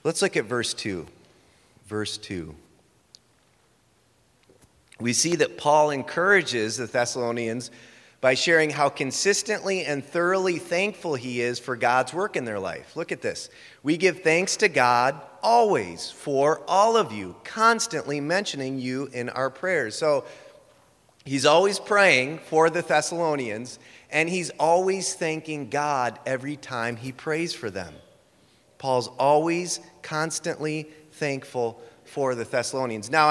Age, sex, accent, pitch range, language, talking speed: 30-49, male, American, 125-180 Hz, English, 135 wpm